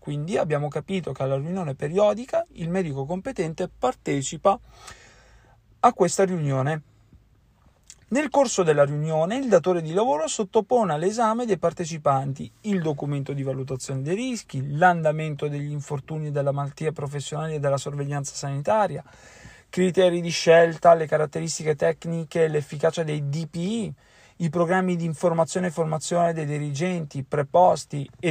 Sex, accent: male, native